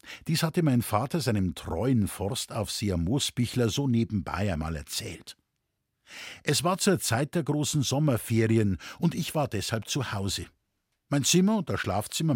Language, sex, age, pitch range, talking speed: German, male, 50-69, 110-165 Hz, 145 wpm